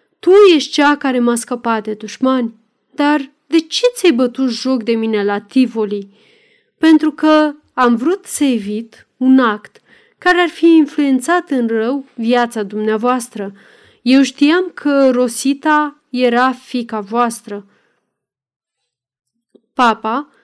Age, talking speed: 30-49, 125 wpm